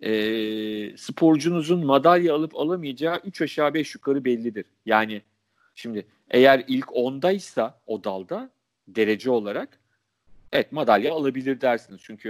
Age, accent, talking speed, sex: 40-59, native, 115 wpm, male